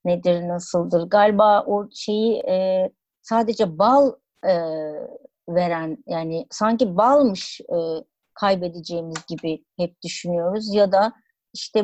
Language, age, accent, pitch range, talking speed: Turkish, 60-79, native, 180-240 Hz, 90 wpm